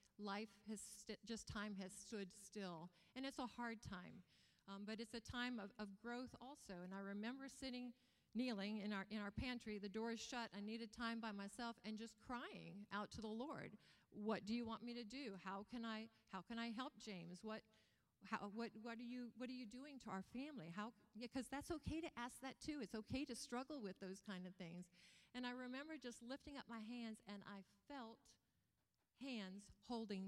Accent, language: American, English